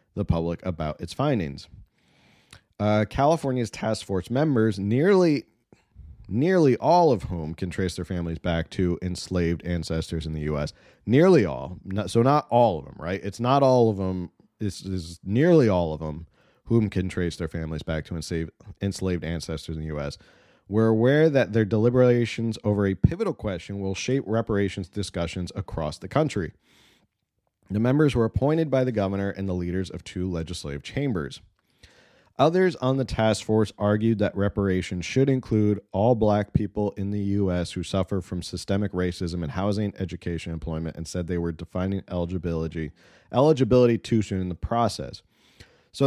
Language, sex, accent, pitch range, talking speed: English, male, American, 90-115 Hz, 165 wpm